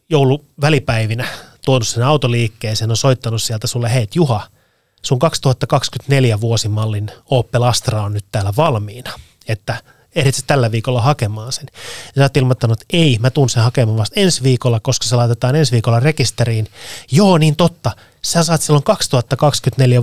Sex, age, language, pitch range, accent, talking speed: male, 30-49, Finnish, 115-140 Hz, native, 160 wpm